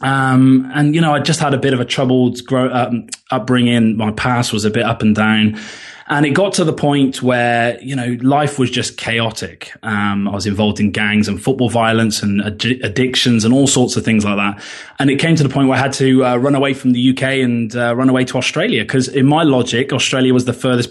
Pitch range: 120-140 Hz